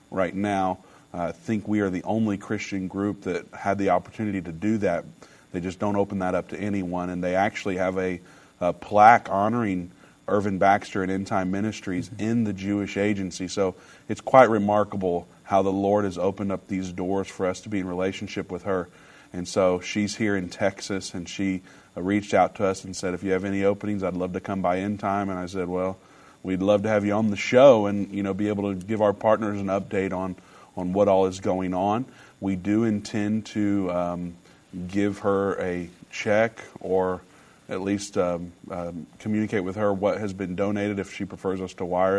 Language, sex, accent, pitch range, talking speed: English, male, American, 95-105 Hz, 210 wpm